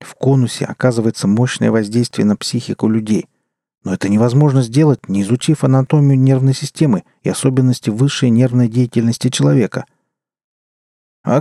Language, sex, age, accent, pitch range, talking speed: Russian, male, 40-59, native, 105-135 Hz, 125 wpm